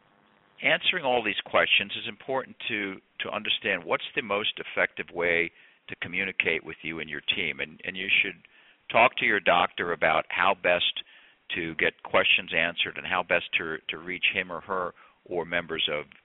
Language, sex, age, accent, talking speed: English, male, 50-69, American, 175 wpm